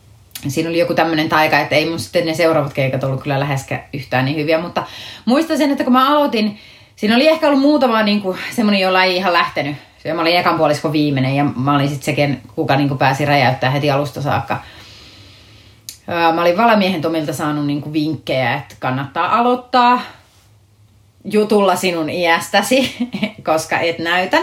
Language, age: English, 30-49